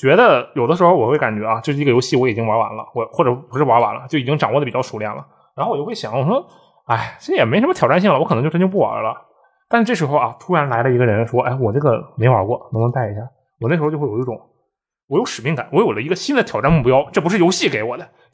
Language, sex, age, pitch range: Chinese, male, 20-39, 125-180 Hz